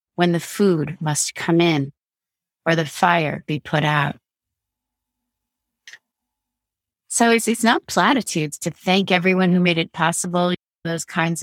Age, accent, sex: 30-49, American, female